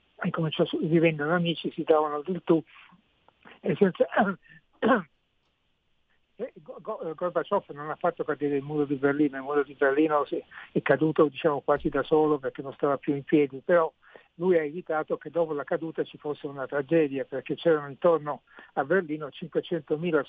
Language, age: Italian, 60-79